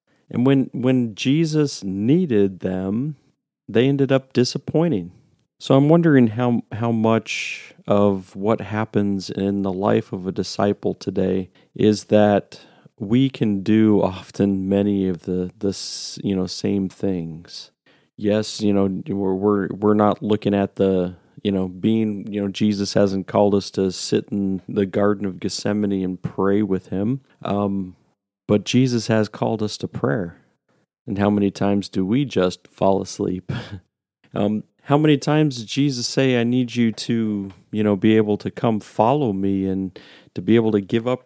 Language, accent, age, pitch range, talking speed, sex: English, American, 40-59, 95-120 Hz, 165 wpm, male